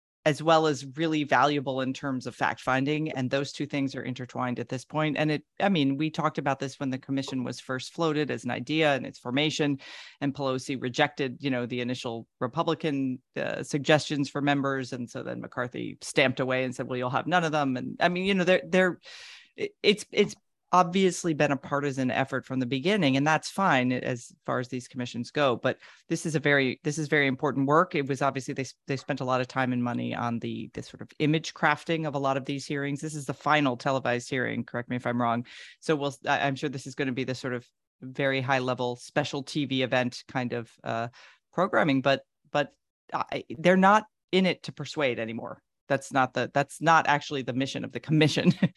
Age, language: 40-59, English